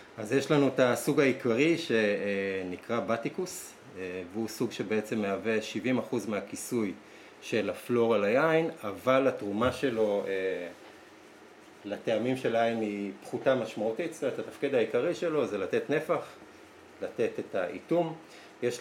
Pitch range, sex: 100-145 Hz, male